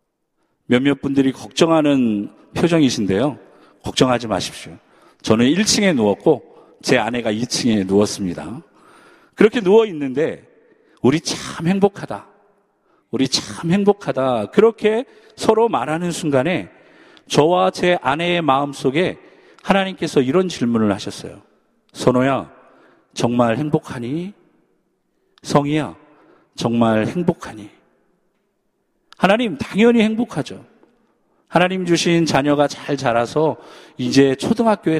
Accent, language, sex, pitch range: native, Korean, male, 135-195 Hz